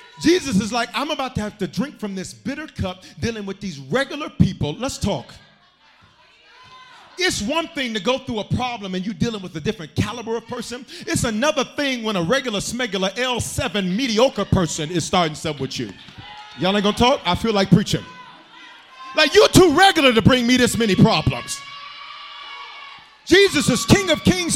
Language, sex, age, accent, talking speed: English, male, 40-59, American, 185 wpm